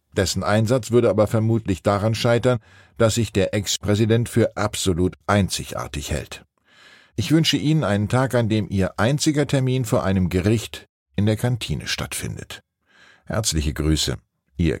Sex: male